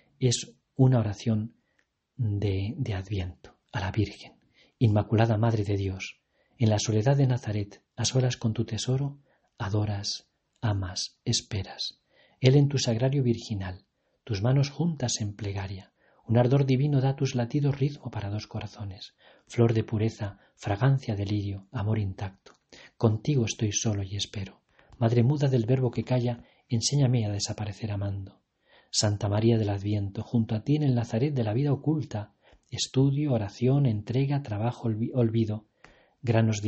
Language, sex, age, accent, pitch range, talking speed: Spanish, male, 40-59, Spanish, 105-125 Hz, 145 wpm